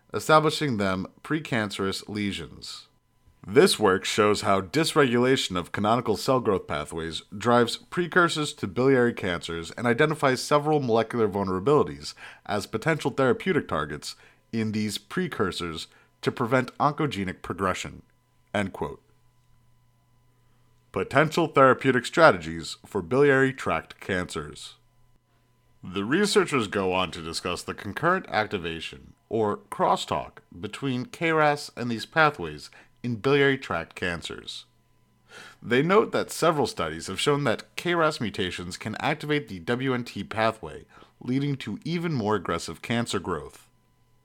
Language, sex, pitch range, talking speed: English, male, 95-140 Hz, 115 wpm